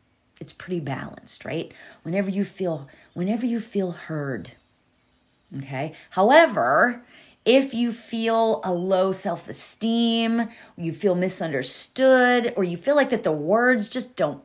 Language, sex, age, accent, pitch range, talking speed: English, female, 40-59, American, 190-265 Hz, 130 wpm